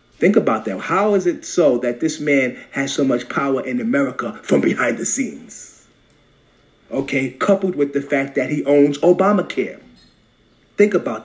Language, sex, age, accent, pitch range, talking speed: English, male, 30-49, American, 140-190 Hz, 165 wpm